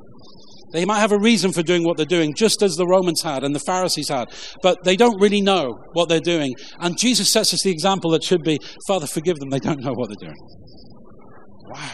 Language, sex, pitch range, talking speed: English, male, 155-195 Hz, 230 wpm